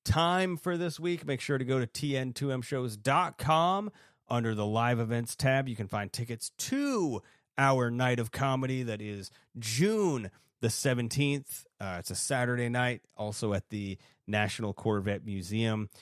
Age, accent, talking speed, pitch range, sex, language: 30-49, American, 150 wpm, 100-130 Hz, male, English